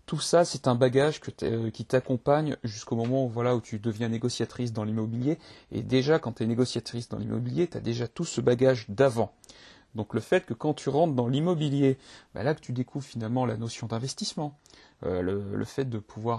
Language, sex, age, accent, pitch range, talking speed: French, male, 30-49, French, 110-130 Hz, 210 wpm